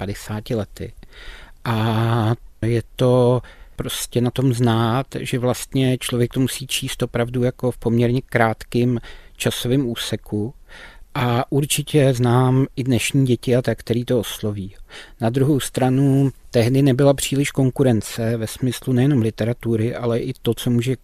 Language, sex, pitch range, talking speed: Czech, male, 115-130 Hz, 140 wpm